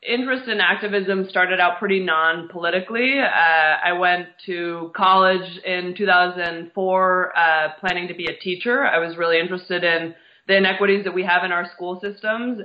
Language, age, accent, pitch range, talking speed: English, 20-39, American, 160-185 Hz, 160 wpm